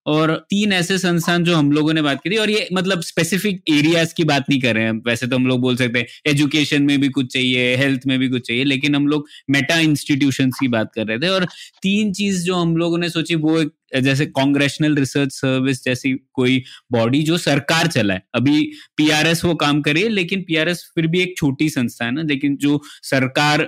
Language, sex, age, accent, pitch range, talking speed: Hindi, male, 20-39, native, 135-170 Hz, 215 wpm